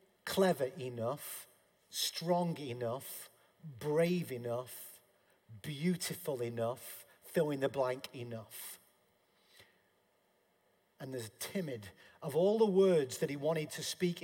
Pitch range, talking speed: 120-155 Hz, 105 wpm